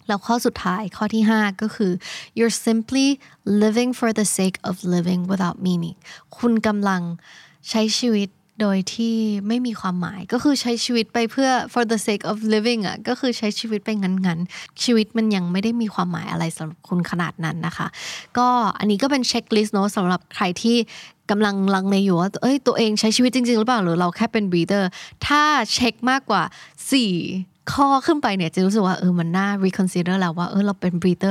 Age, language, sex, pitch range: 20-39, Thai, female, 185-240 Hz